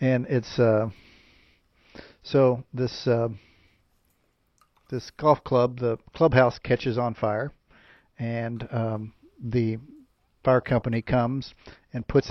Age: 50-69